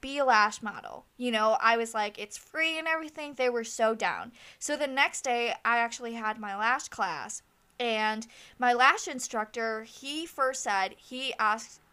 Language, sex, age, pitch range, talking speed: English, female, 10-29, 220-270 Hz, 180 wpm